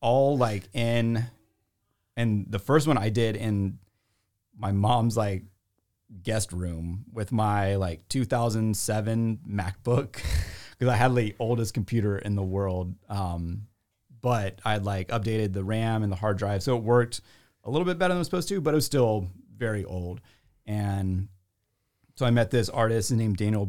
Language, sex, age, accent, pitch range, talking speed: English, male, 30-49, American, 95-115 Hz, 170 wpm